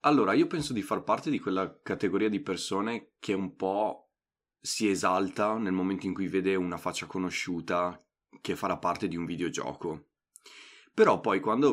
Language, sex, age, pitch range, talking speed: Italian, male, 20-39, 90-110 Hz, 170 wpm